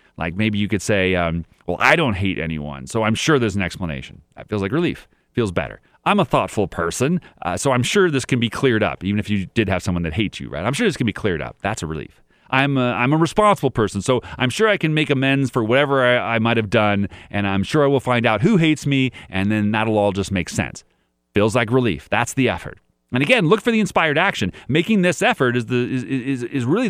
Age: 30-49